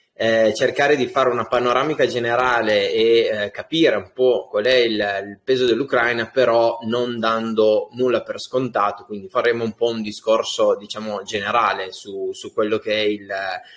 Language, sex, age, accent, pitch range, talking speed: Italian, male, 20-39, native, 105-140 Hz, 160 wpm